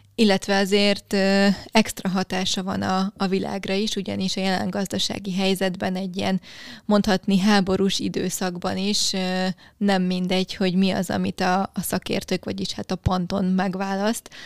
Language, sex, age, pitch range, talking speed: Hungarian, female, 20-39, 185-200 Hz, 135 wpm